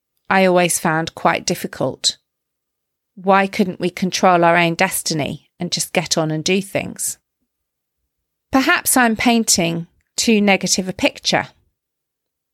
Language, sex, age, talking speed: English, female, 40-59, 125 wpm